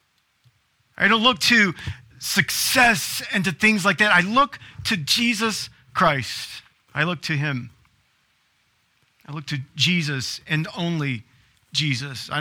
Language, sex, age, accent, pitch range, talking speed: English, male, 40-59, American, 135-170 Hz, 130 wpm